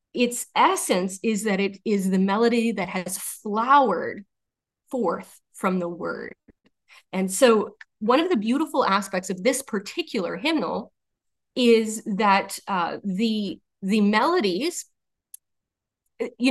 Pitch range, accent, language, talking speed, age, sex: 195-255 Hz, American, English, 120 wpm, 30-49, female